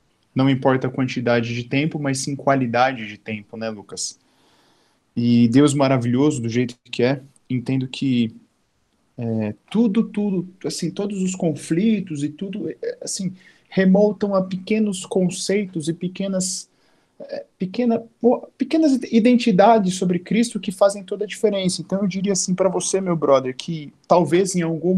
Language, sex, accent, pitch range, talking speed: Portuguese, male, Brazilian, 130-190 Hz, 145 wpm